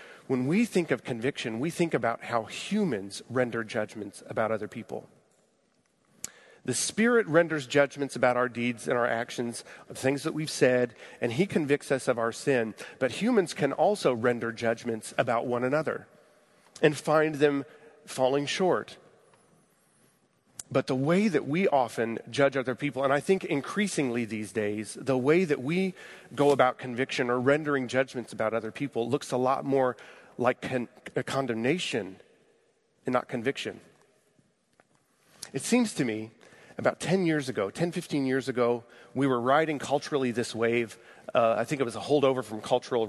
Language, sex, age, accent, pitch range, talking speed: English, male, 40-59, American, 120-150 Hz, 160 wpm